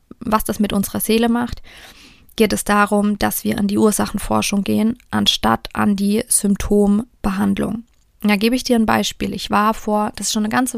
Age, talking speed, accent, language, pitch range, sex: 20-39, 185 wpm, German, German, 195-230 Hz, female